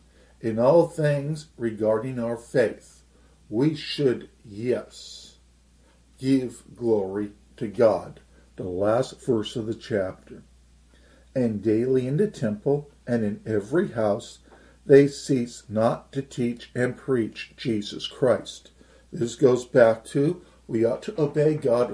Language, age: English, 50-69